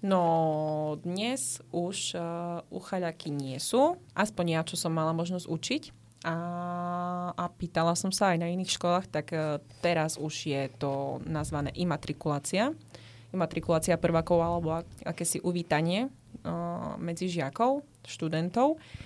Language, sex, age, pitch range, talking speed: Slovak, female, 20-39, 150-175 Hz, 130 wpm